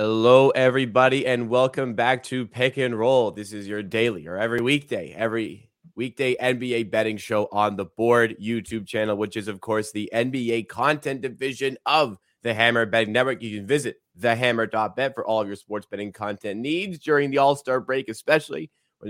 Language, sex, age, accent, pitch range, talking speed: English, male, 20-39, American, 115-135 Hz, 180 wpm